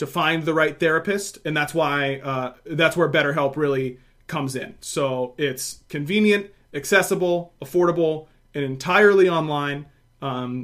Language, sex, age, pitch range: English, male, 30-49, 135-170 Hz